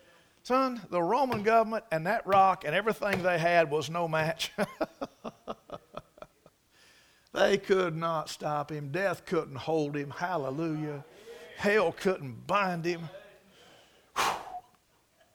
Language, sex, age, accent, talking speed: English, male, 50-69, American, 110 wpm